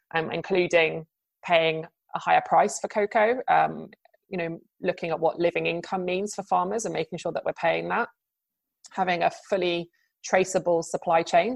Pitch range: 165-190 Hz